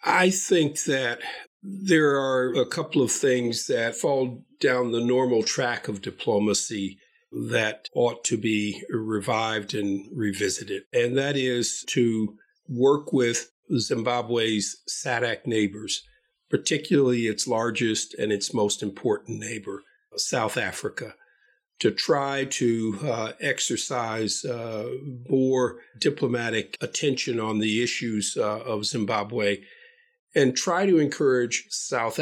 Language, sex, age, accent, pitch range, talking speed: English, male, 50-69, American, 110-135 Hz, 115 wpm